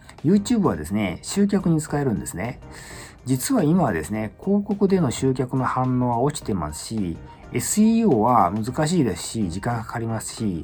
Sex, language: male, Japanese